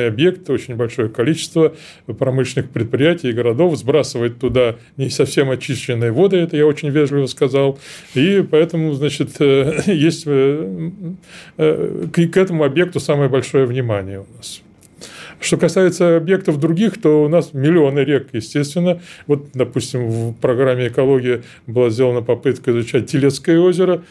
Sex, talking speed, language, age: male, 130 wpm, Russian, 20-39